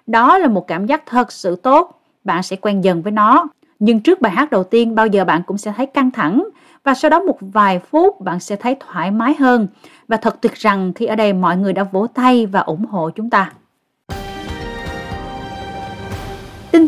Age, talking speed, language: 20-39, 205 wpm, Vietnamese